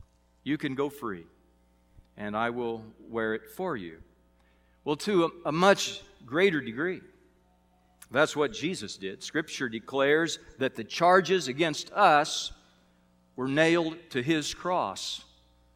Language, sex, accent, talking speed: English, male, American, 130 wpm